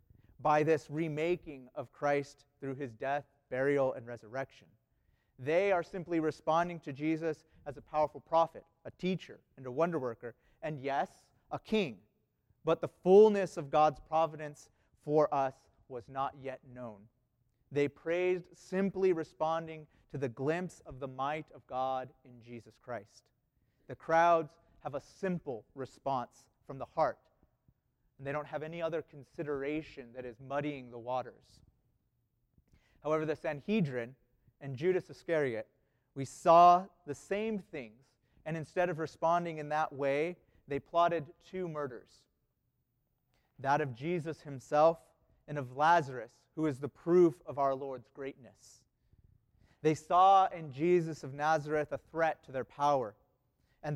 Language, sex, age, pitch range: English, male, 30-49, 130-160 Hz